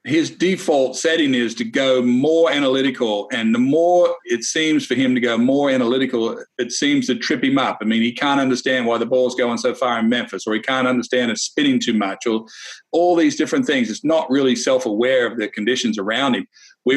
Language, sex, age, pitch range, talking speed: English, male, 50-69, 120-195 Hz, 220 wpm